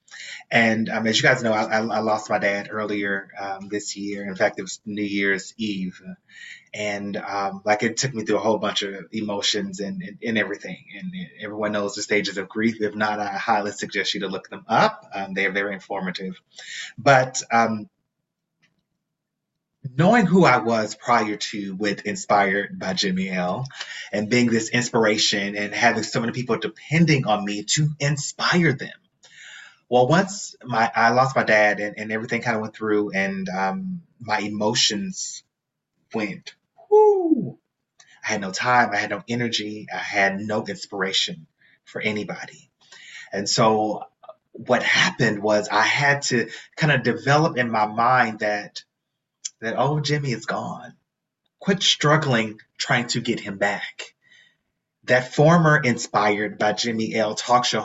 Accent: American